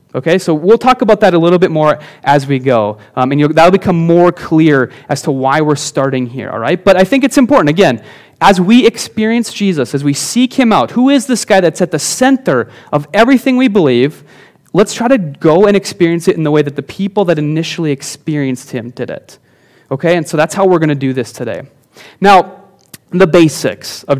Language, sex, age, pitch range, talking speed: English, male, 30-49, 140-195 Hz, 220 wpm